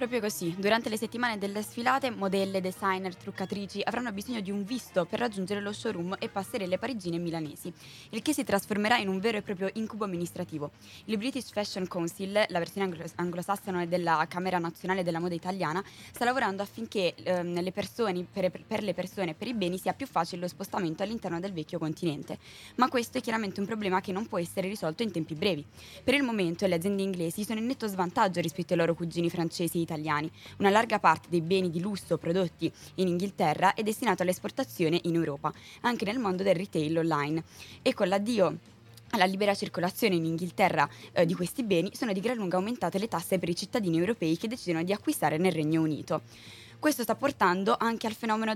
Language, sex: Italian, female